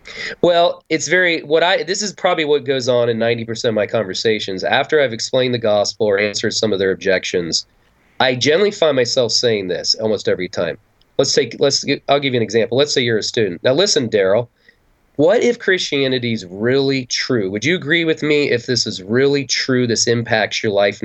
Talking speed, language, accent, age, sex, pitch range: 205 wpm, English, American, 30-49, male, 115-160 Hz